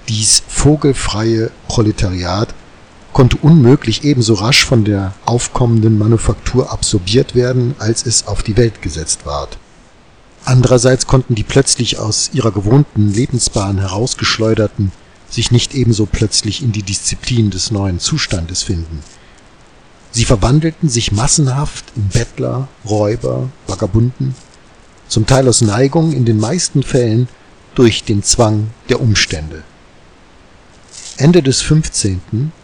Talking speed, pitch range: 120 wpm, 105-130 Hz